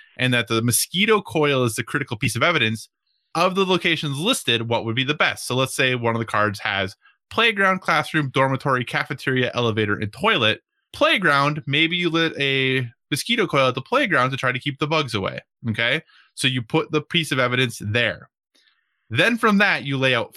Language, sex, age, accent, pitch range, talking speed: English, male, 20-39, American, 120-160 Hz, 195 wpm